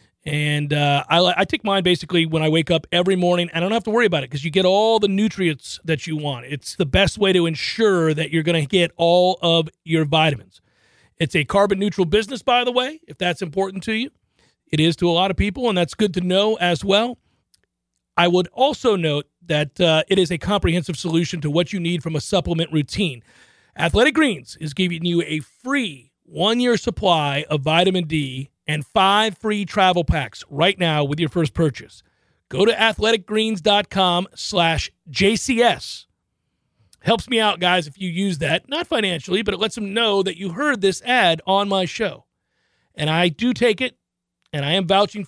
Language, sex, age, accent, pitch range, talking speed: English, male, 40-59, American, 160-205 Hz, 200 wpm